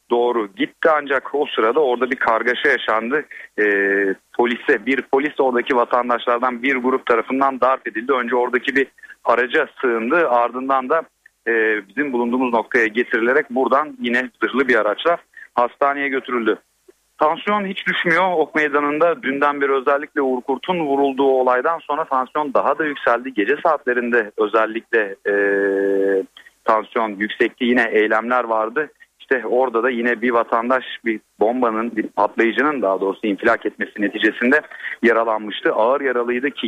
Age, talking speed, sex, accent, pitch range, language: 40-59, 135 wpm, male, native, 115-140 Hz, Turkish